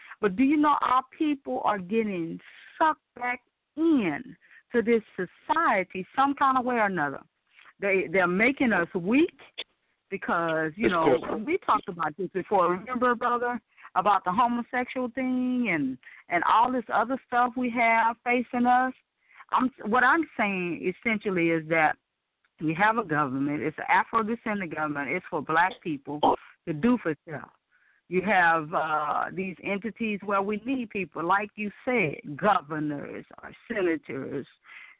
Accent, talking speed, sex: American, 155 wpm, female